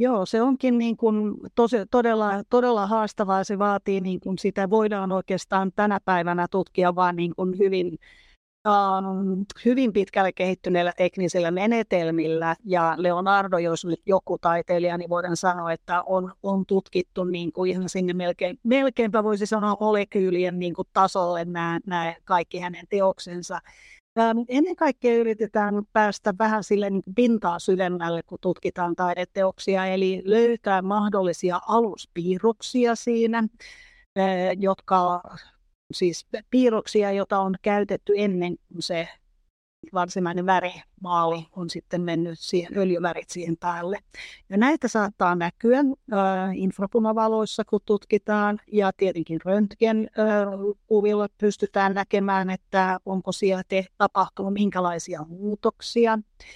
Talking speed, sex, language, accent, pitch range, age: 115 wpm, female, Finnish, native, 180-215 Hz, 30-49